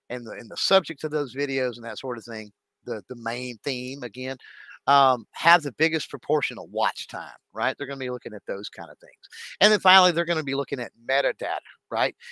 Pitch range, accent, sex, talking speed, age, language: 125-160 Hz, American, male, 235 wpm, 50-69, English